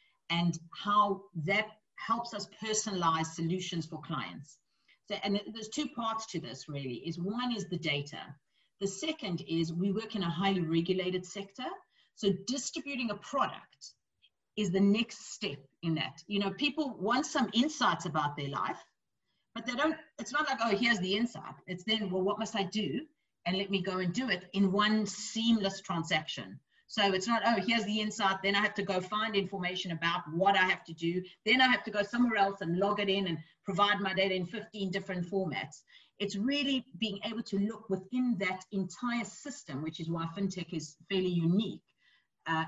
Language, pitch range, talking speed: English, 170-220 Hz, 190 wpm